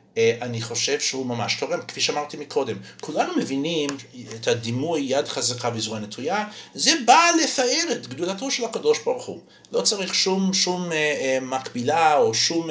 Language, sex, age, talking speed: Hebrew, male, 50-69, 160 wpm